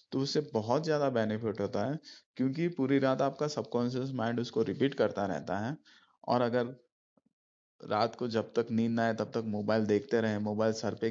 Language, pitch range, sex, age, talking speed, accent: Hindi, 105-120 Hz, male, 20-39, 190 wpm, native